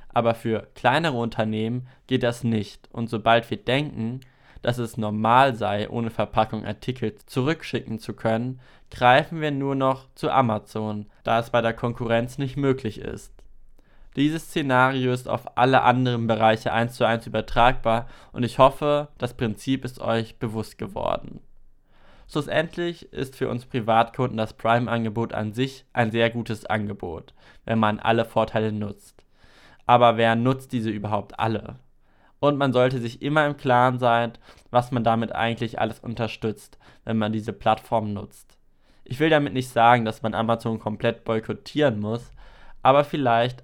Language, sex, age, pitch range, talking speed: German, male, 20-39, 110-130 Hz, 155 wpm